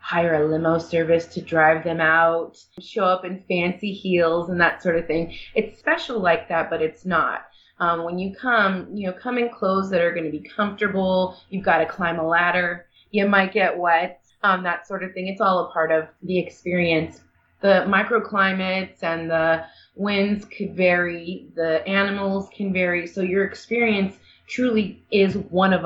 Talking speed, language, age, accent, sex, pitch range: 180 wpm, English, 30-49, American, female, 160-190 Hz